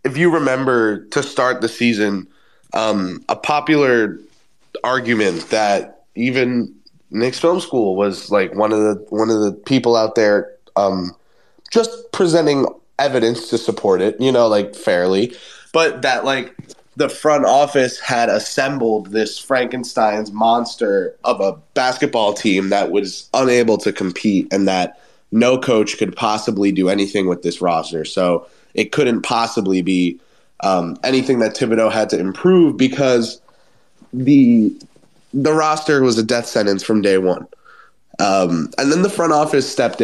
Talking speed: 150 wpm